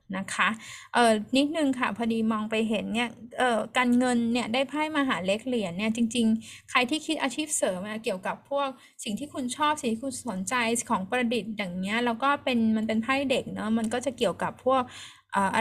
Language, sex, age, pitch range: Thai, female, 20-39, 215-260 Hz